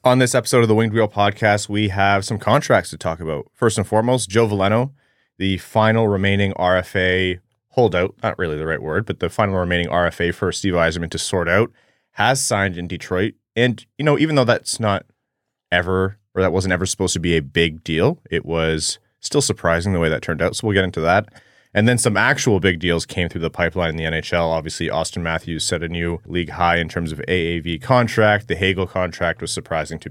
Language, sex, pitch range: English, male, 85-110 Hz